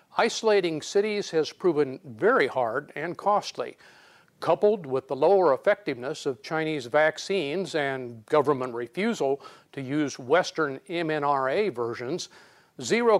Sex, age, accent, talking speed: male, 50-69, American, 115 wpm